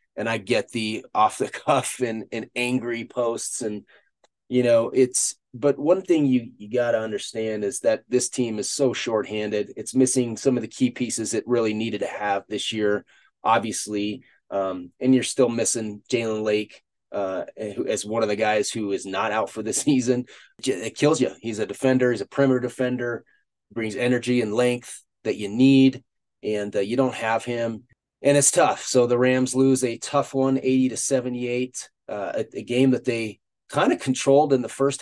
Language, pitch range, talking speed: English, 105-130 Hz, 195 wpm